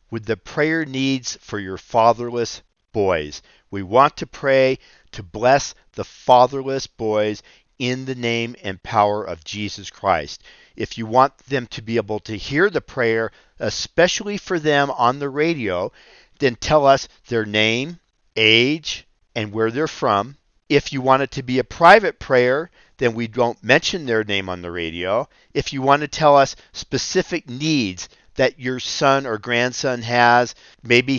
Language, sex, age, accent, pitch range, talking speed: English, male, 50-69, American, 105-135 Hz, 165 wpm